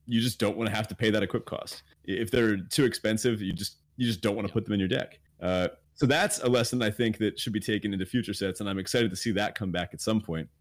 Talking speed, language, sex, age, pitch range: 295 wpm, English, male, 30-49, 95-130 Hz